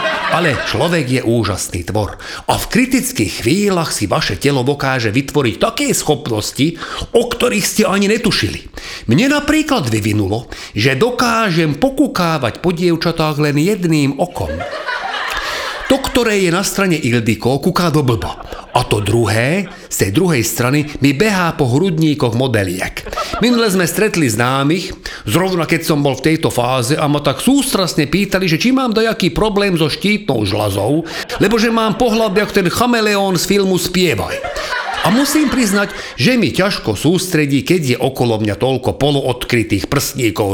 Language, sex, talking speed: Slovak, male, 150 wpm